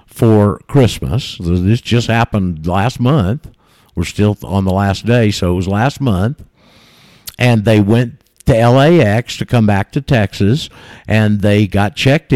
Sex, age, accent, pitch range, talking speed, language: male, 60-79, American, 105-135 Hz, 155 wpm, English